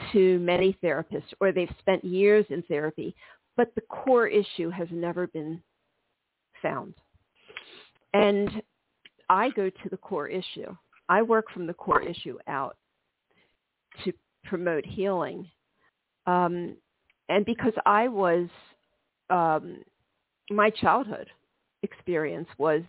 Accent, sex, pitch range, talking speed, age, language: American, female, 175-205 Hz, 115 wpm, 50-69, English